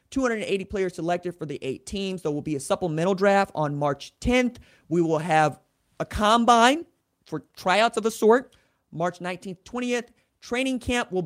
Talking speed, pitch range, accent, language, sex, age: 170 wpm, 180-270 Hz, American, English, male, 30-49